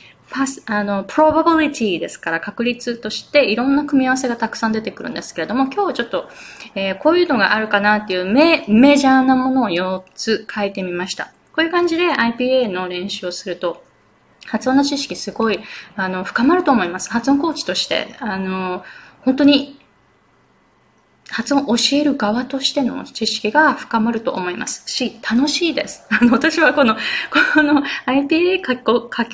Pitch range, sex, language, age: 195-275 Hz, female, Japanese, 20-39